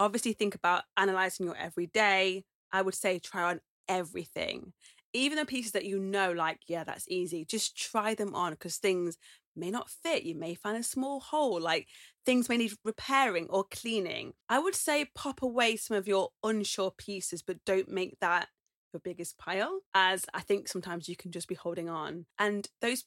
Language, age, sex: English, 20-39, female